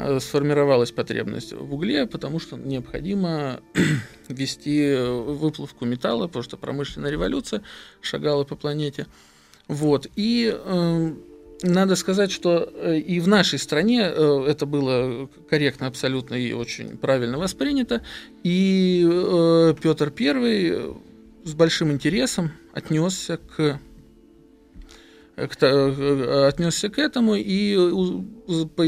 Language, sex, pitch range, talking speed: Russian, male, 140-180 Hz, 100 wpm